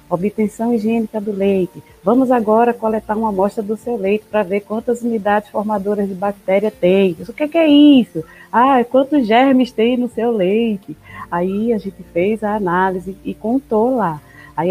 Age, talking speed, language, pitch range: 20-39, 170 wpm, Portuguese, 195-250 Hz